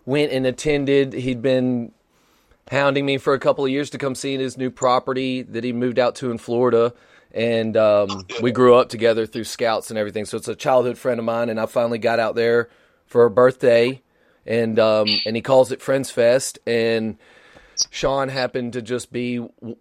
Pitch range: 115-135 Hz